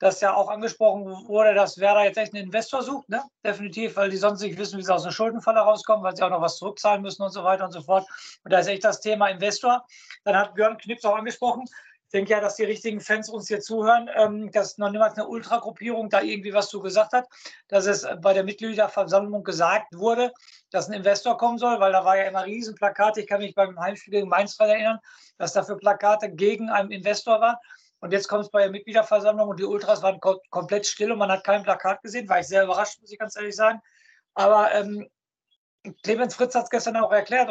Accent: German